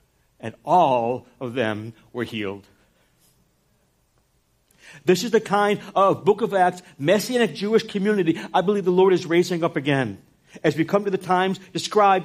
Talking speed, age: 155 wpm, 60-79